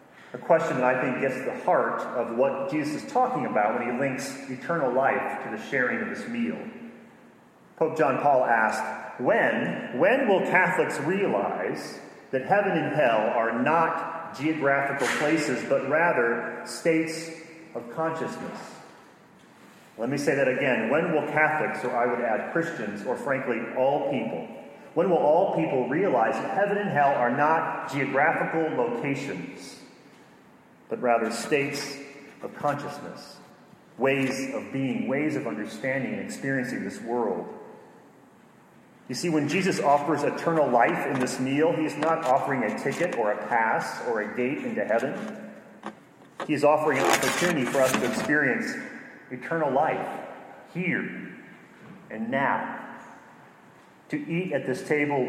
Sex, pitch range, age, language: male, 135-165 Hz, 40-59, English